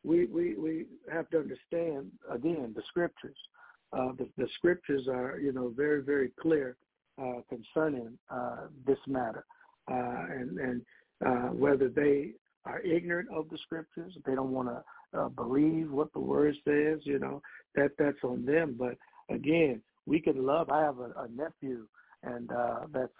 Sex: male